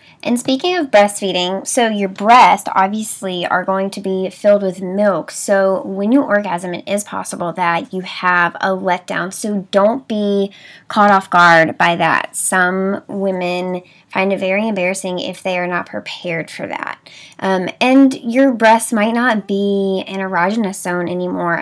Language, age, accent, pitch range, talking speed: English, 10-29, American, 180-205 Hz, 165 wpm